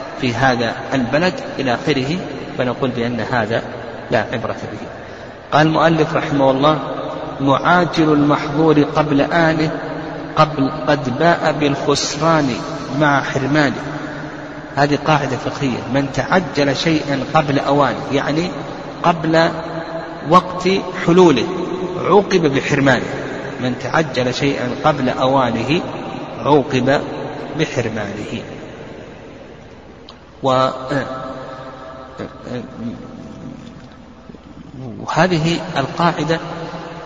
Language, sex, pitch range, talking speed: Arabic, male, 135-160 Hz, 80 wpm